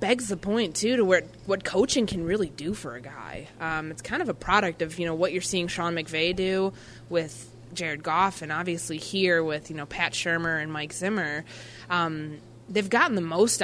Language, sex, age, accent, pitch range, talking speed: English, female, 20-39, American, 155-190 Hz, 210 wpm